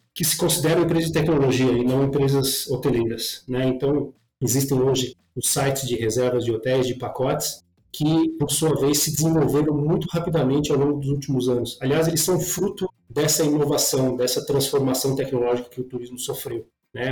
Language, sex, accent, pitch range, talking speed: Portuguese, male, Brazilian, 125-150 Hz, 170 wpm